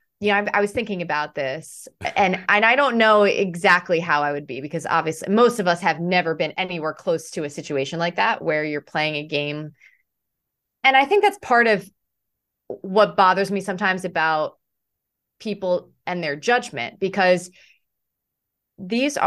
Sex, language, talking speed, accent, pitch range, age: female, English, 170 wpm, American, 170-215 Hz, 20-39